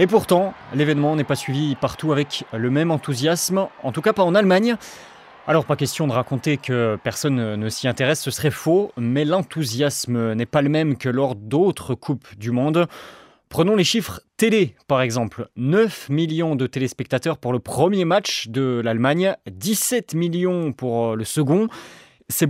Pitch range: 130-180 Hz